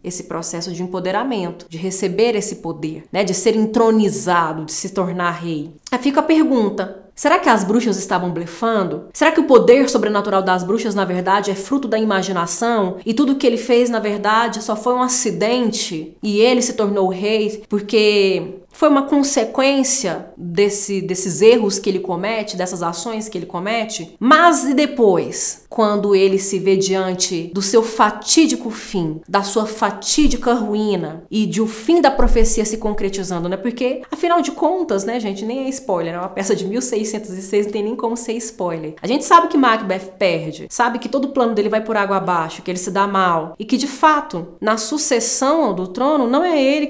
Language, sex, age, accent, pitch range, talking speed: Portuguese, female, 20-39, Brazilian, 190-245 Hz, 190 wpm